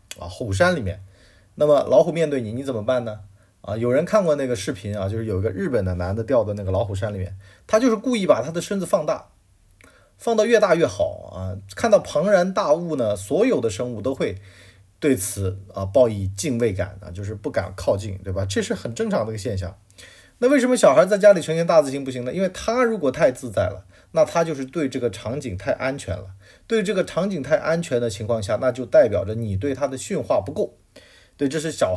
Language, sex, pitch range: Chinese, male, 100-160 Hz